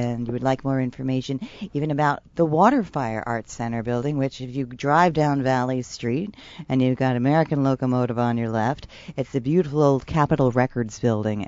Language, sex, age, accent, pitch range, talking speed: English, female, 40-59, American, 125-155 Hz, 185 wpm